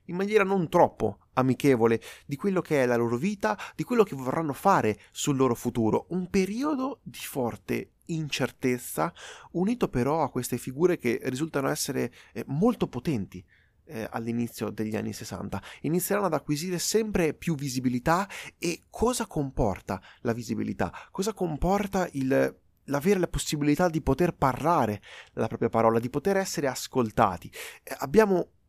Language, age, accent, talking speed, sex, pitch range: Italian, 30-49, native, 140 wpm, male, 115-170 Hz